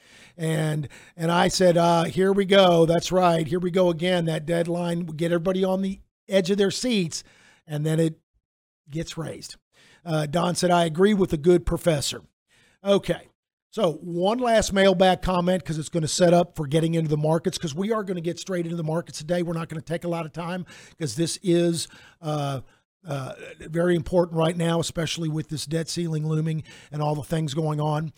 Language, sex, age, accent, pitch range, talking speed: English, male, 50-69, American, 160-185 Hz, 205 wpm